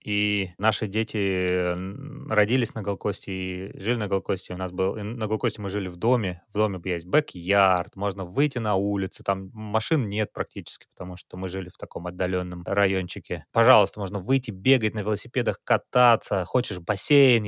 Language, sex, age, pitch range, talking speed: Russian, male, 20-39, 95-130 Hz, 160 wpm